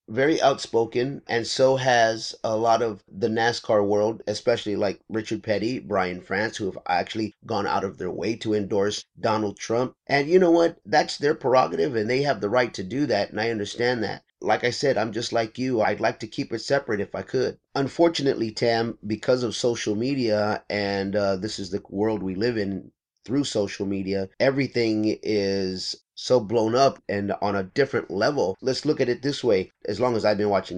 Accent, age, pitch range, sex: American, 30-49, 105-125 Hz, male